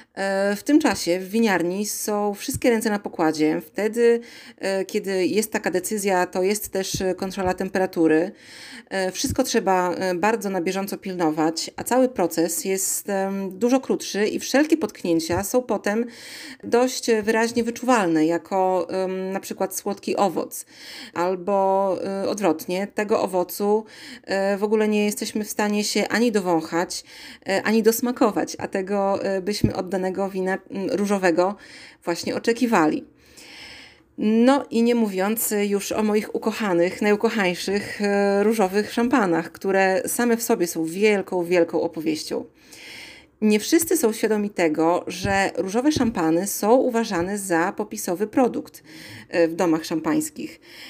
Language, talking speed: Polish, 120 wpm